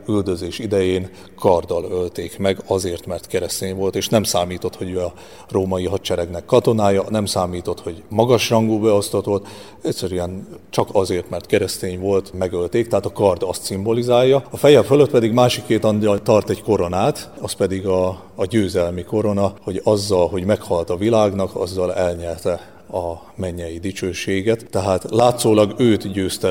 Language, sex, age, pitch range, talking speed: Hungarian, male, 40-59, 90-110 Hz, 145 wpm